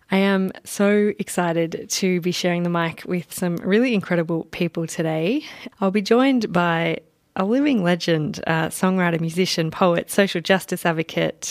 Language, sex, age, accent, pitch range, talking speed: English, female, 20-39, Australian, 165-190 Hz, 150 wpm